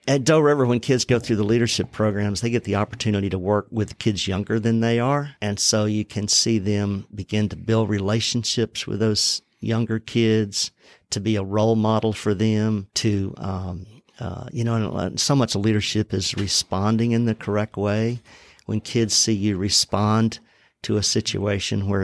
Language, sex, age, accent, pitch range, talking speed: English, male, 50-69, American, 95-115 Hz, 185 wpm